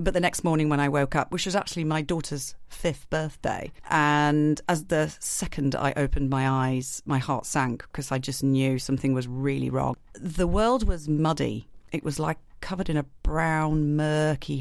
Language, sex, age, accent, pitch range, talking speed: English, female, 40-59, British, 135-160 Hz, 190 wpm